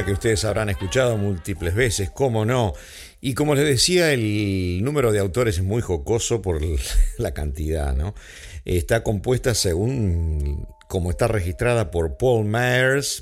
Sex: male